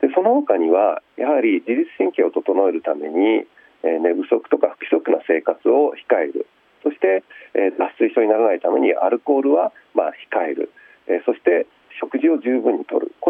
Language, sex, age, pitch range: Japanese, male, 40-59, 315-445 Hz